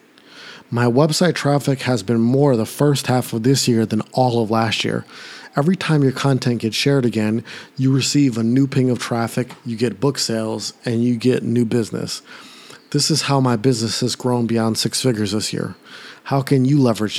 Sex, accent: male, American